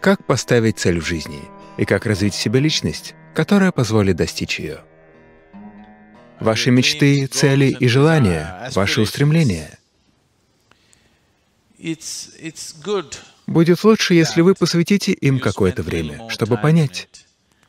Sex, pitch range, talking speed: male, 100-160 Hz, 110 wpm